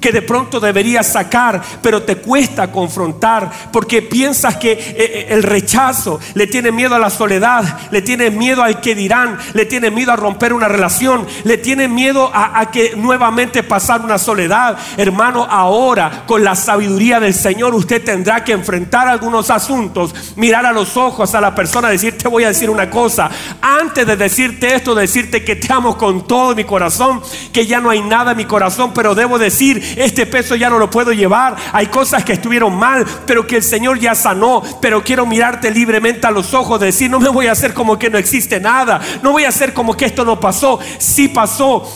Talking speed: 200 wpm